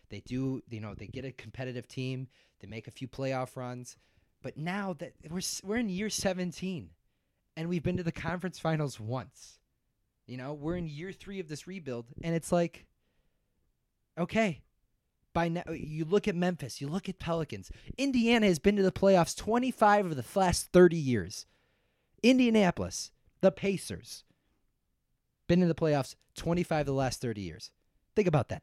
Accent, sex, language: American, male, English